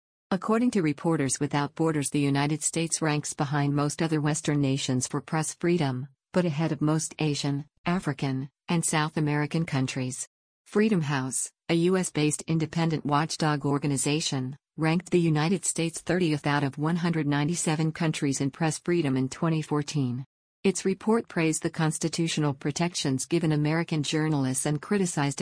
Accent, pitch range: American, 145-165 Hz